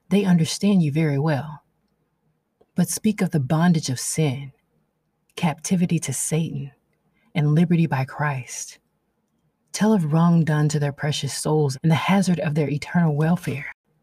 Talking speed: 145 wpm